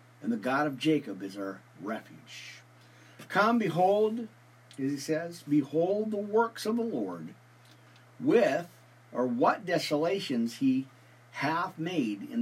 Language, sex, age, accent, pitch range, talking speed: English, male, 50-69, American, 105-175 Hz, 130 wpm